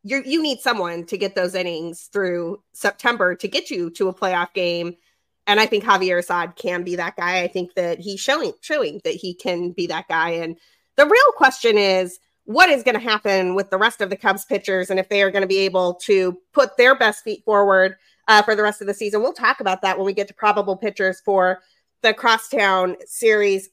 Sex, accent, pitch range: female, American, 190-265 Hz